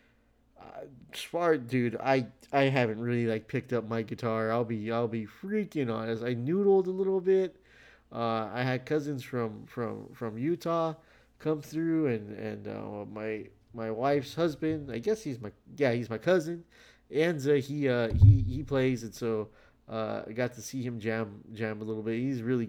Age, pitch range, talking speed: 30-49, 115-135 Hz, 180 wpm